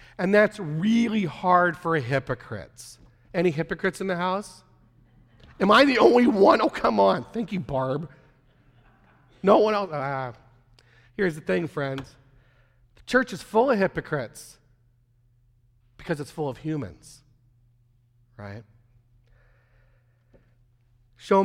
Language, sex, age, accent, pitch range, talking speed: English, male, 40-59, American, 120-180 Hz, 120 wpm